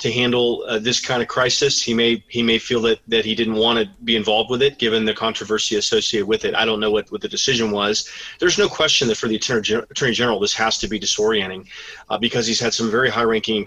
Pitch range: 110-125 Hz